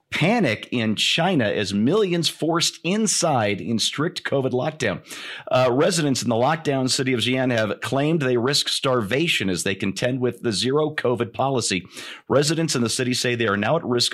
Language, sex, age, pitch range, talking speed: English, male, 40-59, 105-140 Hz, 180 wpm